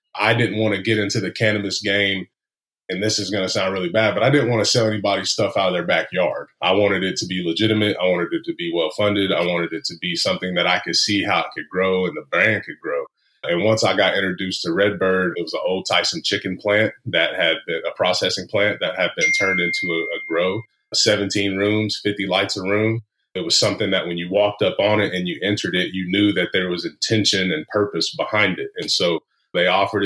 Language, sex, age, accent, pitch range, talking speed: English, male, 30-49, American, 95-110 Hz, 245 wpm